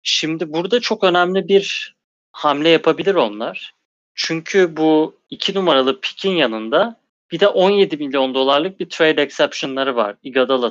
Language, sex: Turkish, male